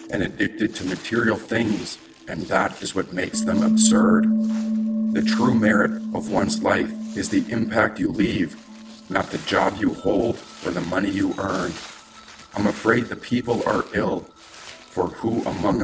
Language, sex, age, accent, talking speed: English, male, 50-69, American, 160 wpm